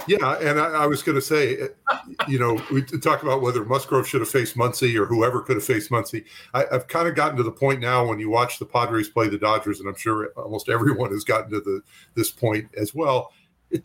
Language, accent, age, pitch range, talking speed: English, American, 50-69, 105-135 Hz, 245 wpm